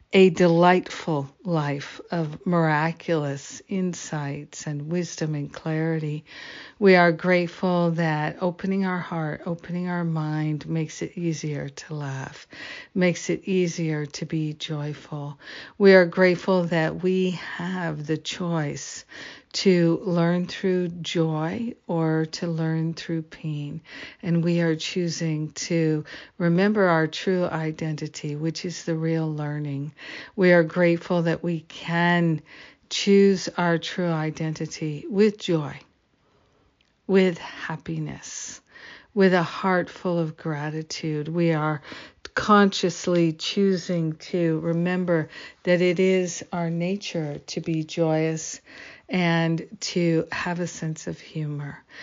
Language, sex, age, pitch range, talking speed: English, female, 60-79, 155-180 Hz, 120 wpm